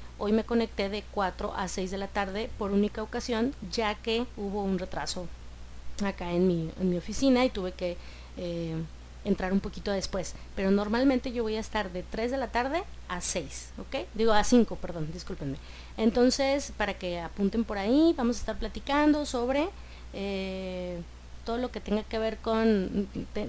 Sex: female